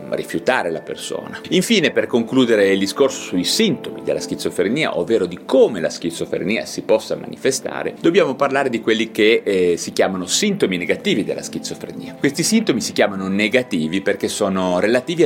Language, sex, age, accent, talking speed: Italian, male, 30-49, native, 155 wpm